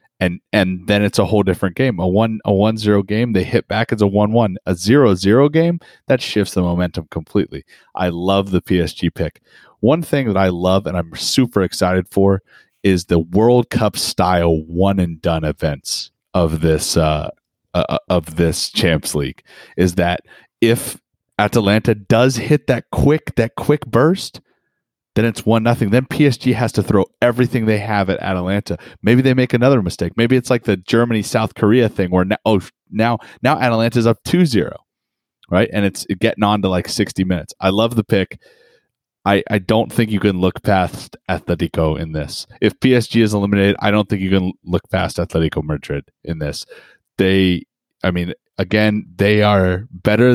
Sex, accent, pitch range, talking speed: male, American, 90-115 Hz, 185 wpm